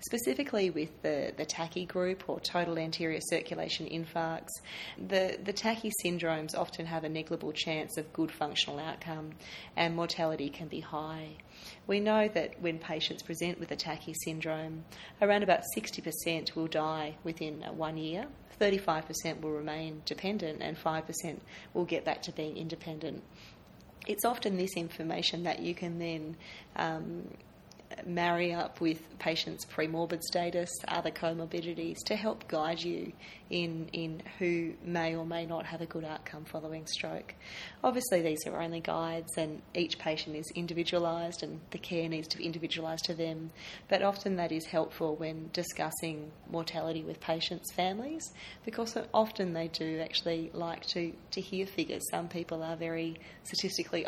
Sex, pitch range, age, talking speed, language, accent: female, 160-175 Hz, 30-49, 155 wpm, English, Australian